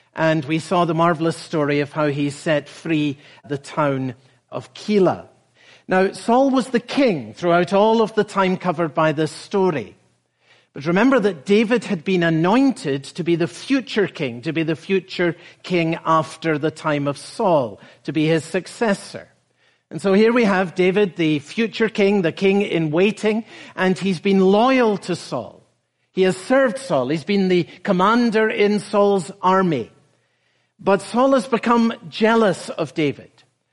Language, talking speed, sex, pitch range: English, 165 wpm, male, 160-210 Hz